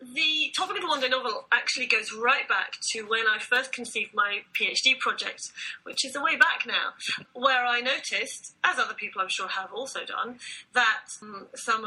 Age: 30-49